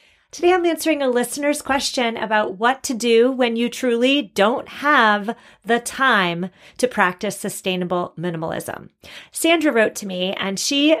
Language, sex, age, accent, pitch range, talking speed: English, female, 30-49, American, 195-250 Hz, 145 wpm